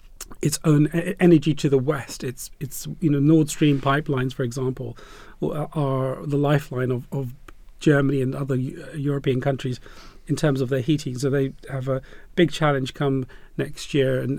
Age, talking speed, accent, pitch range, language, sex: 40-59, 165 wpm, British, 135-155 Hz, English, male